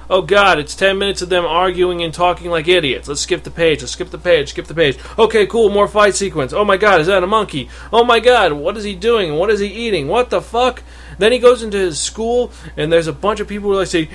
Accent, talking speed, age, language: American, 270 wpm, 30-49, English